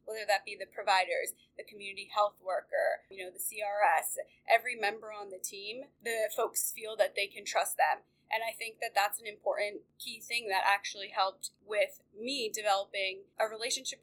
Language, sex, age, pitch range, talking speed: English, female, 20-39, 200-255 Hz, 185 wpm